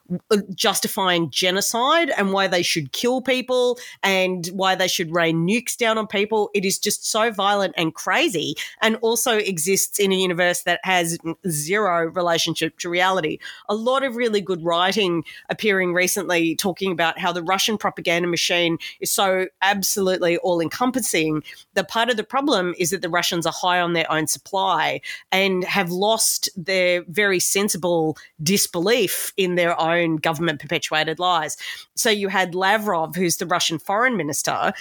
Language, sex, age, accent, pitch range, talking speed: English, female, 30-49, Australian, 175-200 Hz, 160 wpm